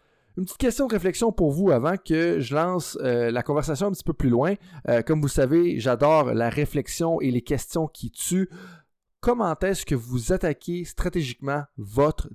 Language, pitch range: French, 125-175 Hz